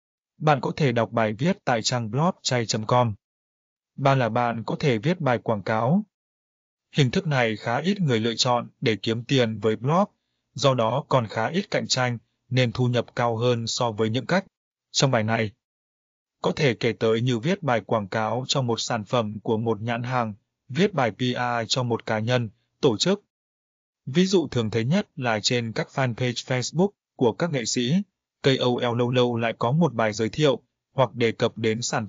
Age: 20-39